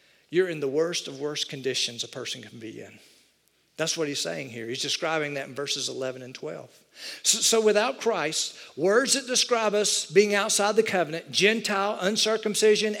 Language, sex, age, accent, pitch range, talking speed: English, male, 50-69, American, 160-210 Hz, 180 wpm